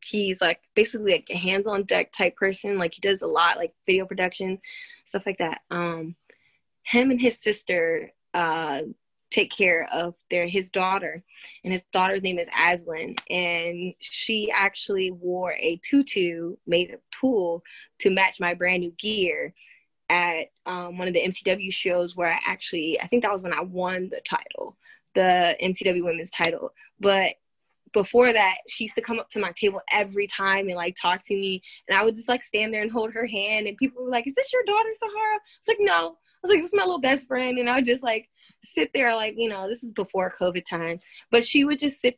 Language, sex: English, female